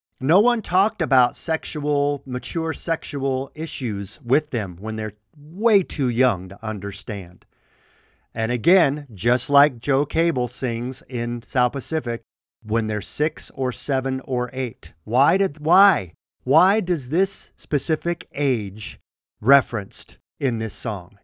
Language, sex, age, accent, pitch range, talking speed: English, male, 50-69, American, 110-155 Hz, 130 wpm